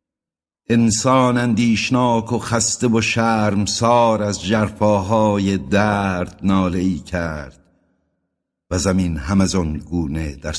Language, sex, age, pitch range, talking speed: Persian, male, 60-79, 90-115 Hz, 110 wpm